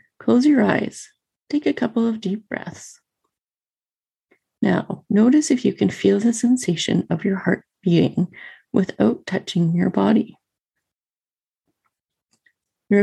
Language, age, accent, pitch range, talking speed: English, 30-49, American, 170-240 Hz, 120 wpm